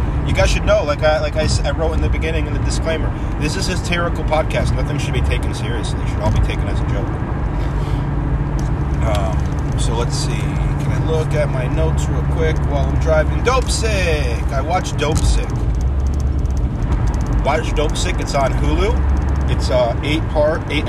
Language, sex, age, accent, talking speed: English, male, 30-49, American, 185 wpm